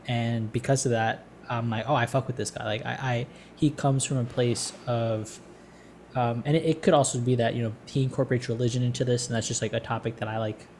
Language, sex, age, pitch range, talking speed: English, male, 10-29, 115-130 Hz, 250 wpm